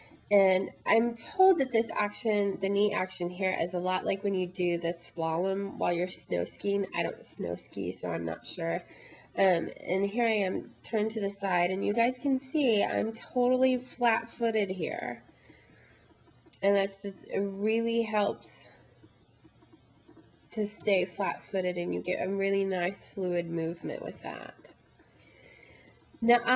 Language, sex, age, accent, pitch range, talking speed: English, female, 20-39, American, 180-225 Hz, 155 wpm